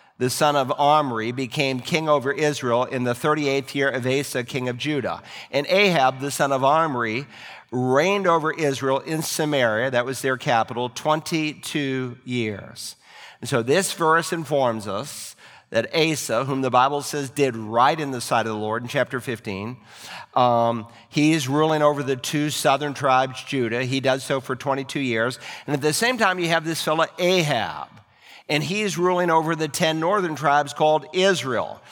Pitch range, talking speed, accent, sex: 130-160 Hz, 175 wpm, American, male